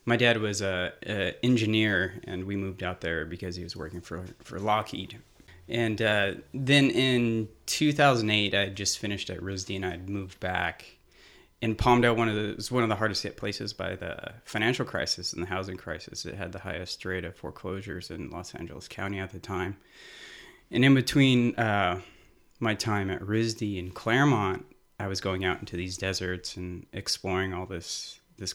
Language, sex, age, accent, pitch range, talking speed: English, male, 30-49, American, 95-110 Hz, 190 wpm